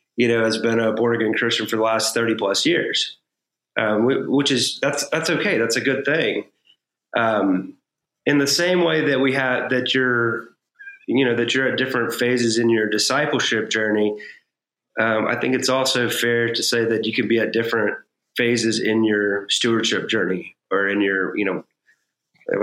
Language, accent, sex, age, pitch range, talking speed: English, American, male, 30-49, 110-130 Hz, 185 wpm